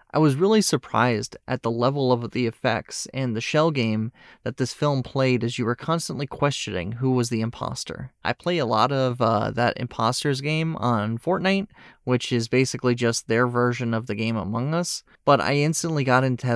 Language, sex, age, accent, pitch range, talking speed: English, male, 30-49, American, 120-150 Hz, 195 wpm